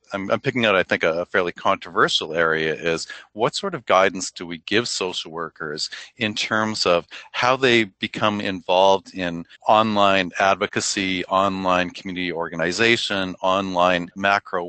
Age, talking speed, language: 40-59, 140 wpm, English